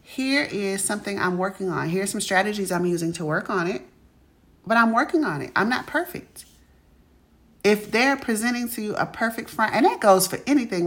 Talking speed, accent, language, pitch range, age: 200 wpm, American, English, 175-235 Hz, 30-49